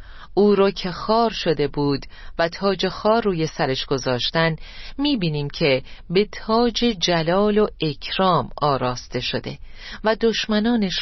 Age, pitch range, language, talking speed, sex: 40-59, 145-195 Hz, Persian, 125 wpm, female